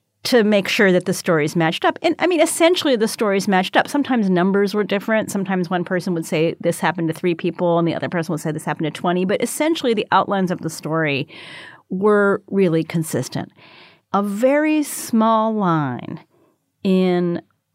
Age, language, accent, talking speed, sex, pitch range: 40-59, English, American, 185 wpm, female, 155-195 Hz